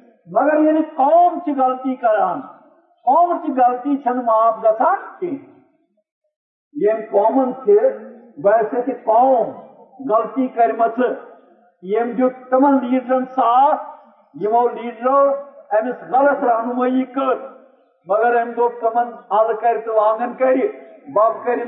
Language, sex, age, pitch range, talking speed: Urdu, male, 50-69, 235-290 Hz, 90 wpm